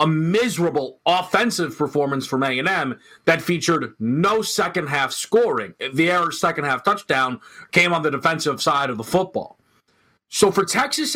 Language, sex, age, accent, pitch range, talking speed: English, male, 30-49, American, 140-185 Hz, 140 wpm